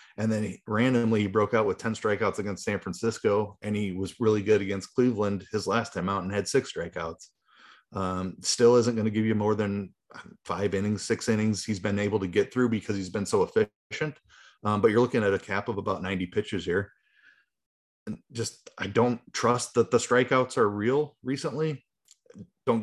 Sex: male